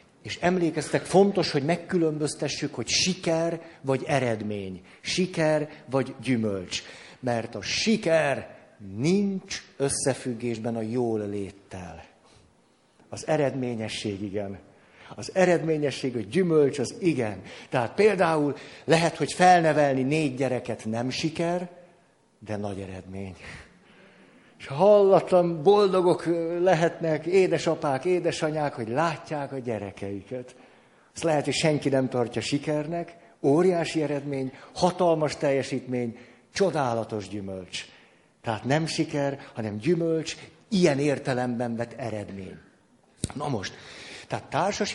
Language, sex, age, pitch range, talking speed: Hungarian, male, 60-79, 120-170 Hz, 105 wpm